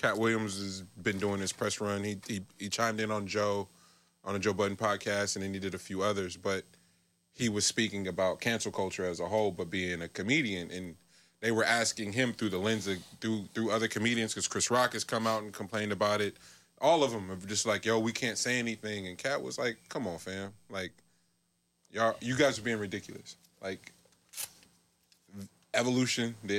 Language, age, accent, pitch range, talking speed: English, 20-39, American, 95-115 Hz, 210 wpm